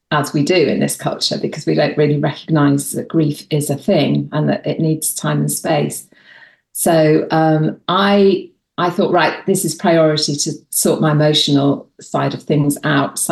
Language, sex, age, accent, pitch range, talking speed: English, female, 40-59, British, 150-185 Hz, 185 wpm